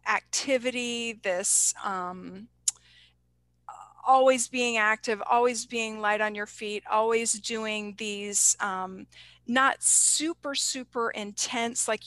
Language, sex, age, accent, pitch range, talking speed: English, female, 40-59, American, 205-240 Hz, 105 wpm